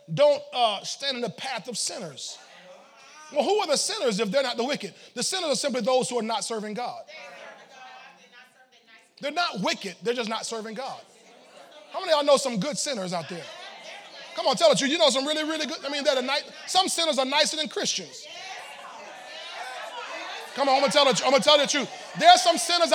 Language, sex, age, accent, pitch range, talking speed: English, male, 30-49, American, 265-355 Hz, 210 wpm